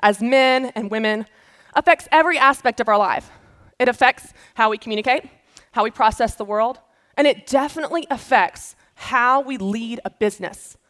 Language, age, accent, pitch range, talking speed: English, 20-39, American, 220-285 Hz, 160 wpm